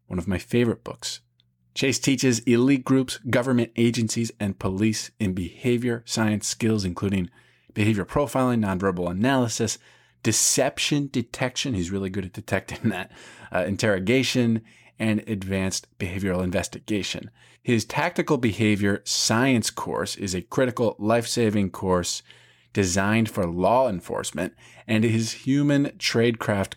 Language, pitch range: English, 100-125 Hz